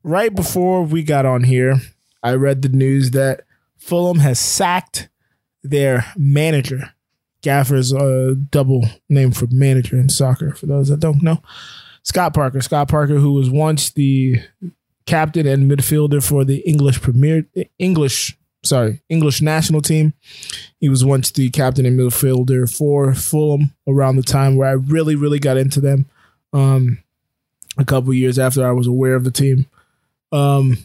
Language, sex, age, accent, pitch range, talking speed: English, male, 20-39, American, 130-150 Hz, 160 wpm